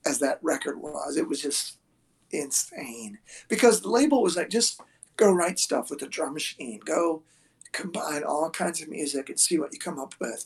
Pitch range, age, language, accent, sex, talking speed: 155-220 Hz, 50-69, English, American, male, 195 wpm